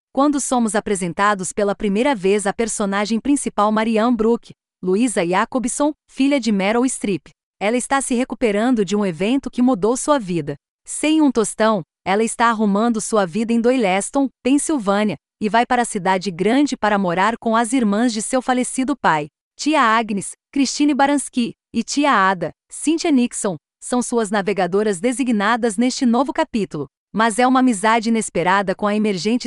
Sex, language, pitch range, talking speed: female, Portuguese, 205-255 Hz, 160 wpm